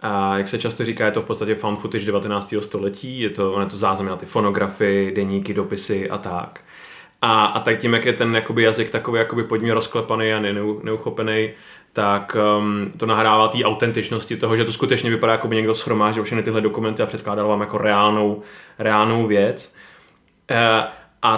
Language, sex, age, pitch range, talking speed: Czech, male, 20-39, 105-125 Hz, 180 wpm